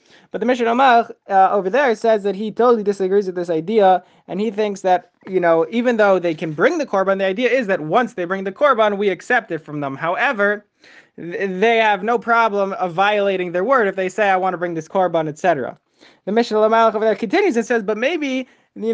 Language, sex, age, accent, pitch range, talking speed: English, male, 20-39, American, 185-225 Hz, 220 wpm